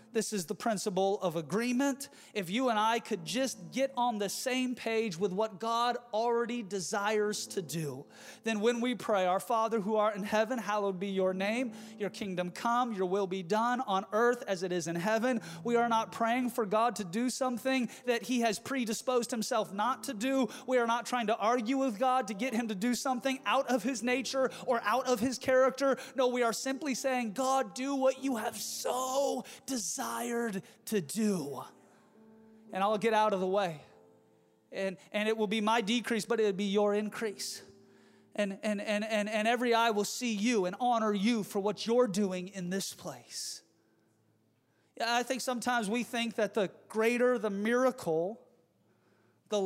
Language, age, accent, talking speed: English, 30-49, American, 190 wpm